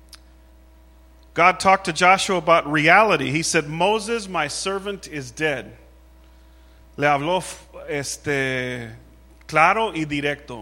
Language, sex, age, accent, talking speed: English, male, 40-59, American, 105 wpm